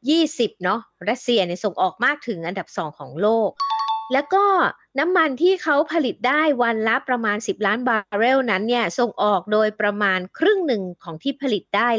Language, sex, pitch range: Thai, female, 195-265 Hz